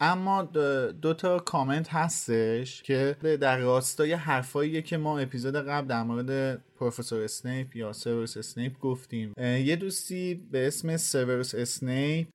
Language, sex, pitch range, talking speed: Persian, male, 120-150 Hz, 120 wpm